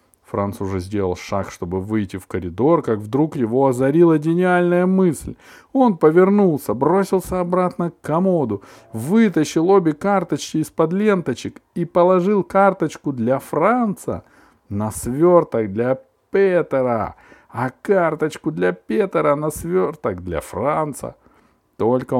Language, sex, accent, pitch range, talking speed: Russian, male, native, 115-160 Hz, 115 wpm